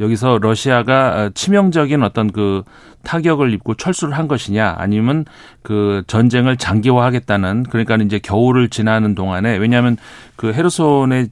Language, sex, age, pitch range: Korean, male, 40-59, 105-135 Hz